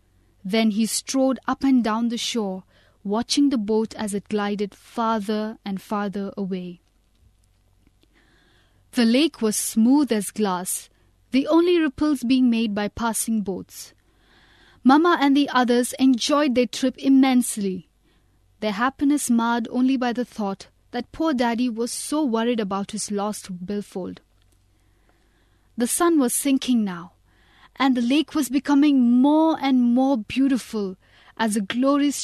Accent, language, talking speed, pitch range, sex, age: Indian, English, 140 wpm, 210-270 Hz, female, 20-39